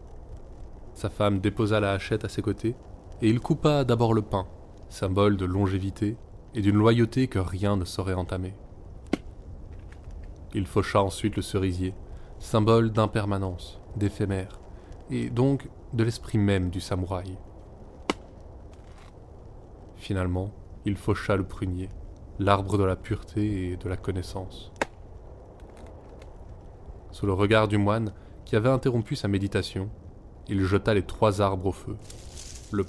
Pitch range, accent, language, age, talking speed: 90-105 Hz, French, French, 20-39, 130 wpm